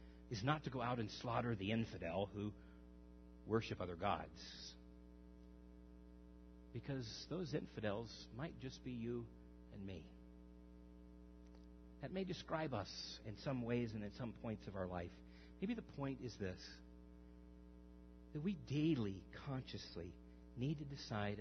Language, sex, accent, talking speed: English, male, American, 135 wpm